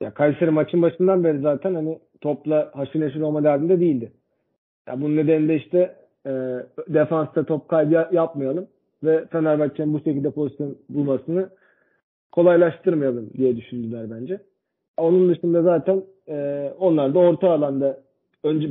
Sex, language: male, Turkish